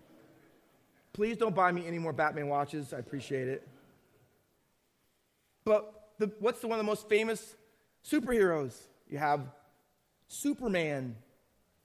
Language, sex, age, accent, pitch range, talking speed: English, male, 30-49, American, 160-225 Hz, 120 wpm